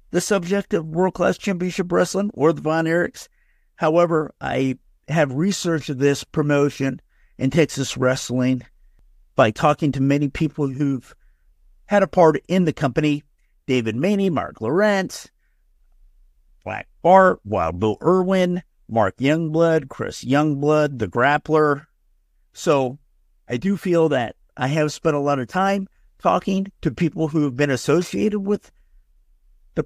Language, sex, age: English, male, 50-69